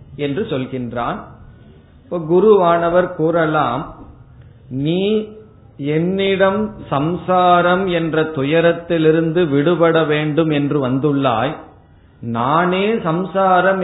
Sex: male